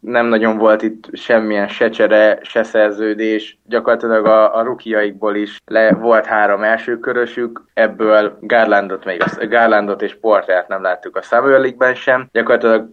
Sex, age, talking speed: male, 20-39, 140 wpm